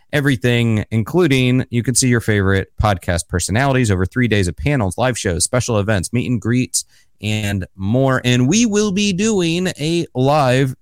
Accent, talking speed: American, 165 wpm